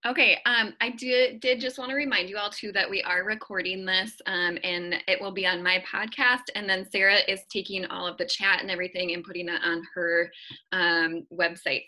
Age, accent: 20-39, American